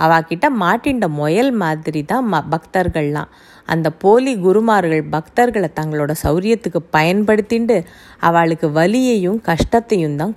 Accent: native